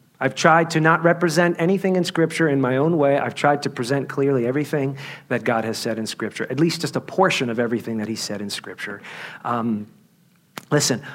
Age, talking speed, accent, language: 40-59, 205 wpm, American, English